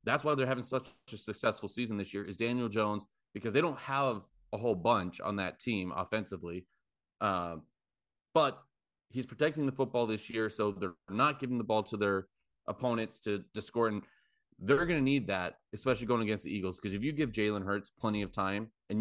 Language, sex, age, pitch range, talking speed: English, male, 30-49, 100-120 Hz, 205 wpm